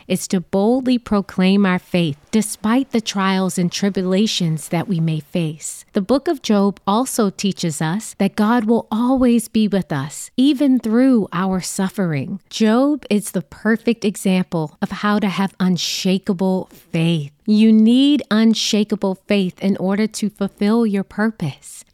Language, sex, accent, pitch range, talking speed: English, female, American, 180-230 Hz, 150 wpm